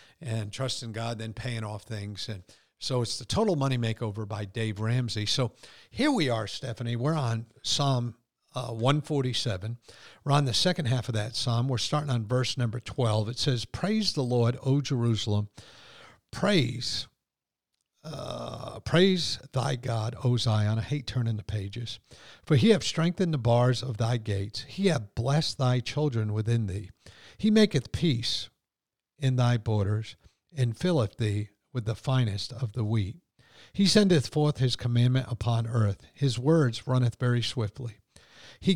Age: 50-69